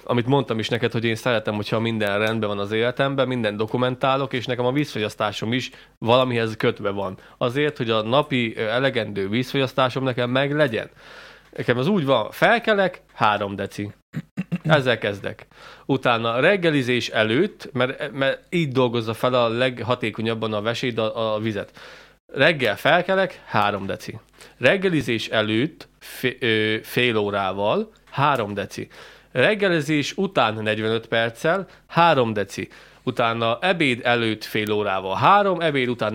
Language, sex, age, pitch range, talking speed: Hungarian, male, 30-49, 115-140 Hz, 135 wpm